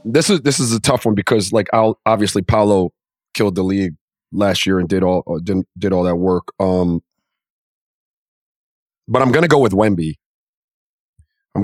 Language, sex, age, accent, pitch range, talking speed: English, male, 30-49, American, 95-125 Hz, 175 wpm